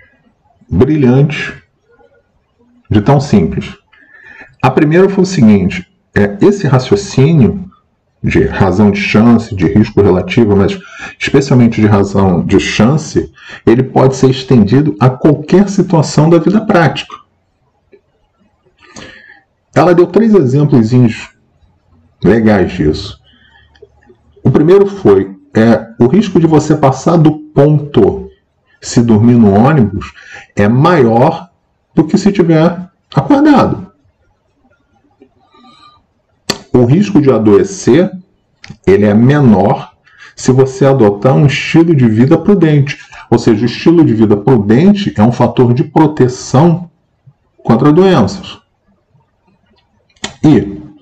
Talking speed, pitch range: 105 wpm, 110-175 Hz